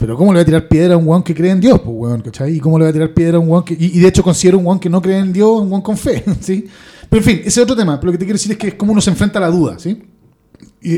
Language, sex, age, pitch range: Spanish, male, 30-49, 145-185 Hz